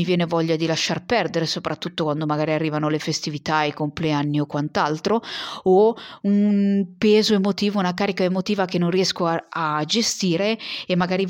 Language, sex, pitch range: Italian, female, 160-210 Hz